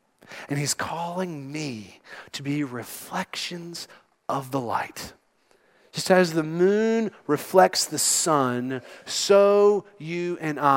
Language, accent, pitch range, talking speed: English, American, 130-170 Hz, 110 wpm